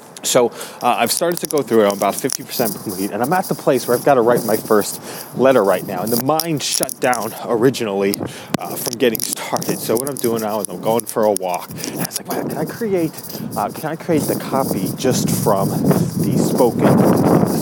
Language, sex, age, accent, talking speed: English, male, 30-49, American, 230 wpm